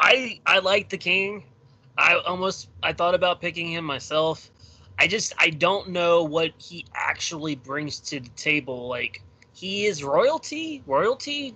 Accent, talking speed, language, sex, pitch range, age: American, 155 wpm, English, male, 120-190 Hz, 20-39